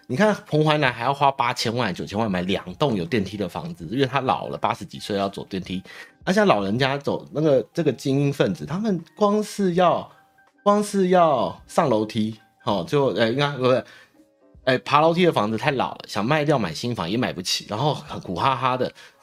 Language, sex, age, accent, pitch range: Chinese, male, 30-49, native, 110-170 Hz